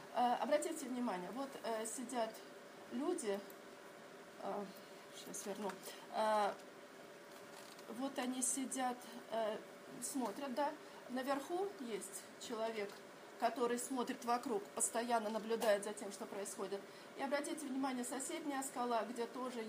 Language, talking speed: Russian, 90 wpm